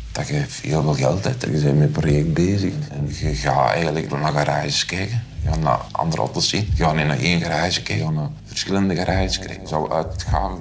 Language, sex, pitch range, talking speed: Dutch, male, 75-95 Hz, 240 wpm